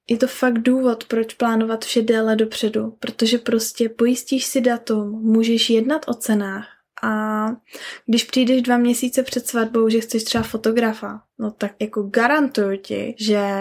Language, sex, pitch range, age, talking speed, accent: Czech, female, 210-245 Hz, 10-29, 155 wpm, native